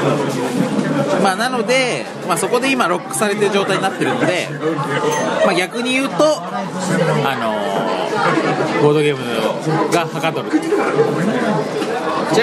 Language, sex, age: Japanese, male, 40-59